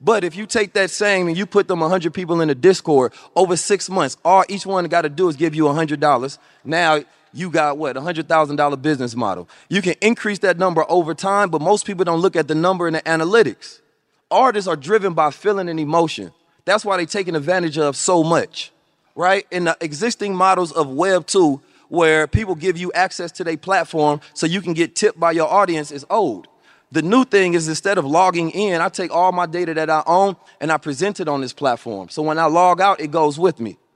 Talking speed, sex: 225 wpm, male